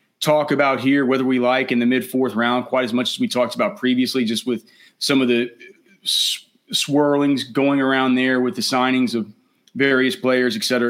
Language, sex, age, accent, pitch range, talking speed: English, male, 30-49, American, 120-140 Hz, 200 wpm